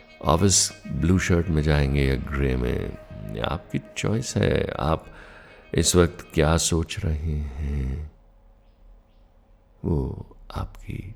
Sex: male